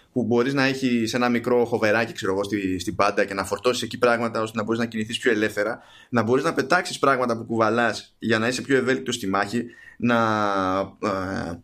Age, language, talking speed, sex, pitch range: 20-39, Greek, 195 wpm, male, 110-130 Hz